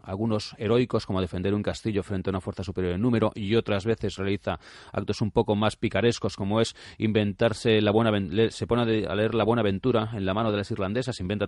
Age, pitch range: 30-49, 100-120 Hz